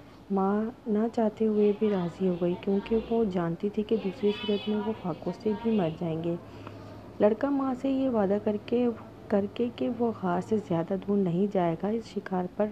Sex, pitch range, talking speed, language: female, 180-220 Hz, 210 wpm, Urdu